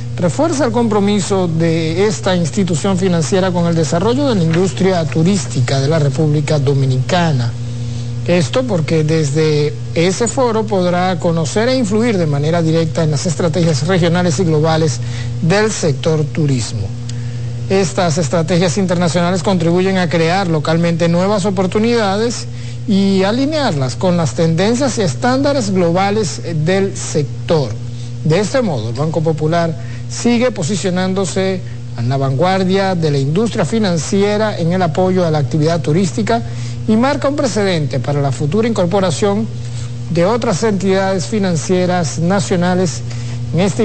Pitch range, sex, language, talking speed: 130-190 Hz, male, Spanish, 130 wpm